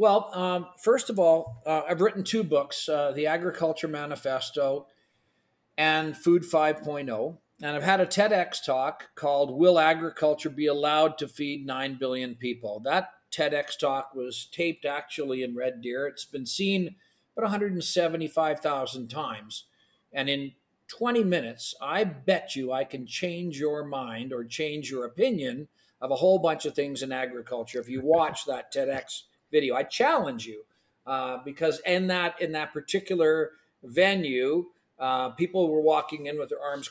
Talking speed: 160 wpm